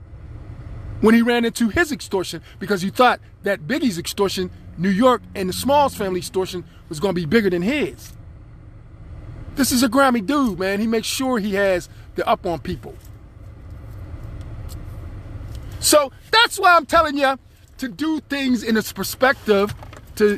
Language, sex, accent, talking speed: English, male, American, 160 wpm